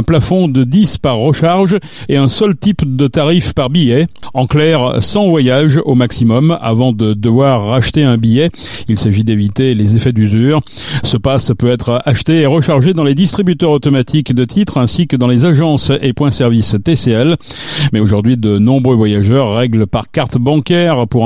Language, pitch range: French, 120-160 Hz